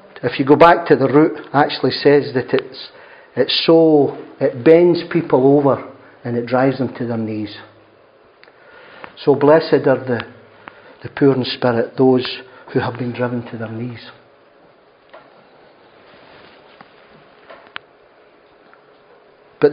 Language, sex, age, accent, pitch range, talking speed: English, male, 50-69, British, 125-160 Hz, 130 wpm